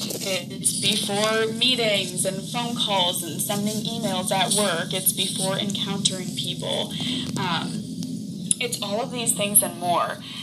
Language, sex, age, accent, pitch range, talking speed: English, female, 20-39, American, 190-230 Hz, 130 wpm